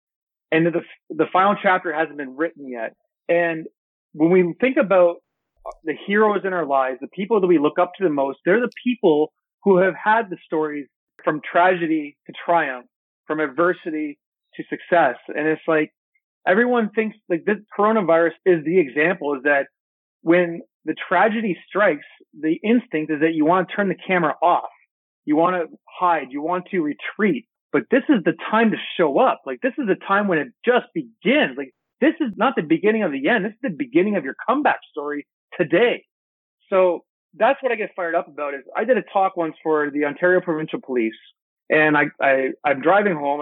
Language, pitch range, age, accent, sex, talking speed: English, 155-205 Hz, 30-49, American, male, 195 wpm